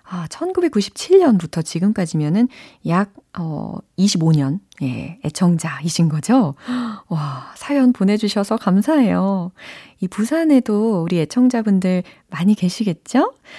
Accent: native